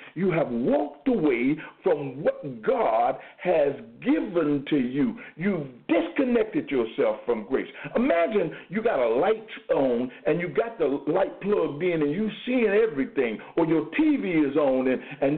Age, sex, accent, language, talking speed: 60-79, male, American, English, 155 wpm